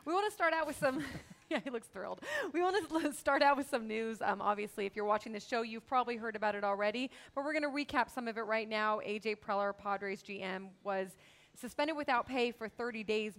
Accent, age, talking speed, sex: American, 30-49, 240 wpm, female